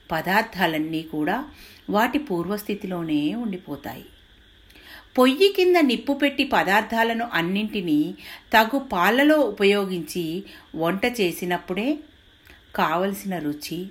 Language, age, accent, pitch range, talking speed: Telugu, 50-69, native, 155-250 Hz, 80 wpm